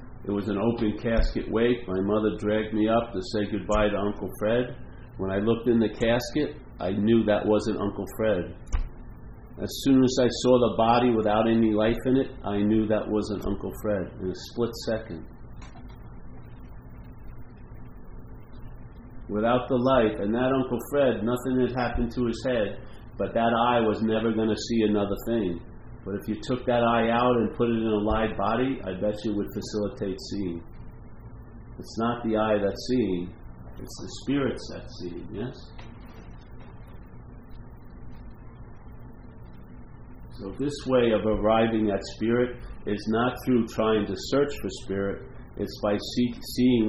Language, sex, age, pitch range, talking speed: English, male, 50-69, 100-120 Hz, 160 wpm